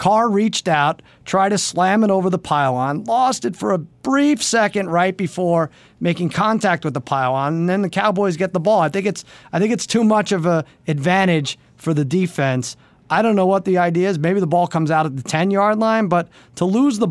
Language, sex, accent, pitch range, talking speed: English, male, American, 145-195 Hz, 225 wpm